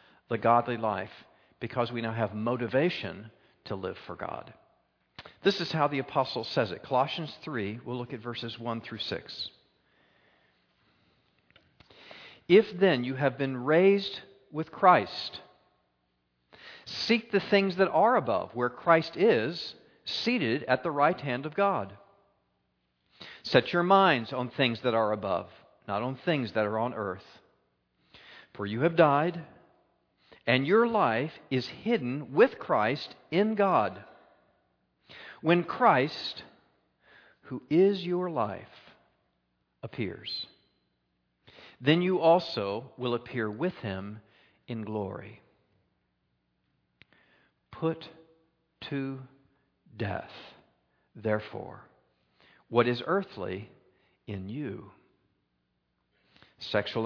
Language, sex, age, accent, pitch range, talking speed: English, male, 50-69, American, 105-165 Hz, 110 wpm